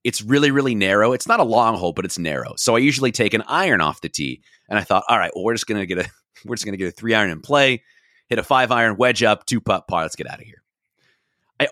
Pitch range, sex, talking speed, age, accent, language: 95-140 Hz, male, 285 wpm, 30-49, American, English